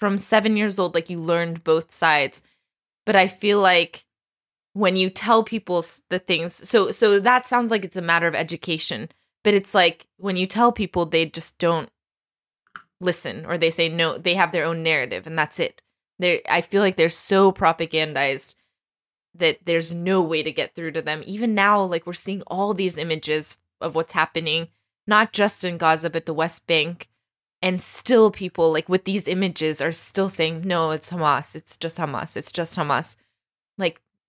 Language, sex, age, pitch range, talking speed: English, female, 20-39, 165-200 Hz, 185 wpm